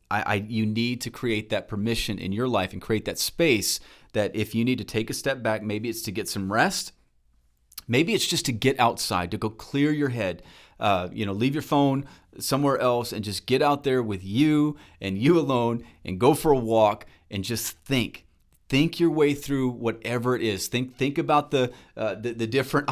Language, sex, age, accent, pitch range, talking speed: English, male, 30-49, American, 110-140 Hz, 215 wpm